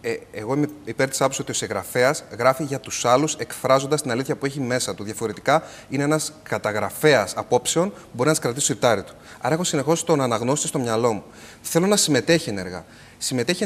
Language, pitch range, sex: Greek, 120-160 Hz, male